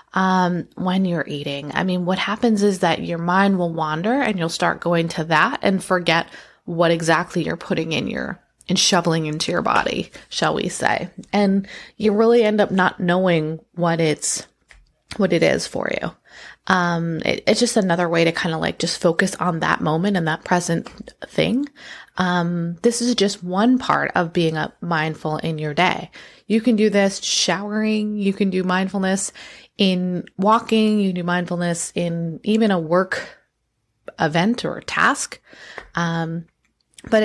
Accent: American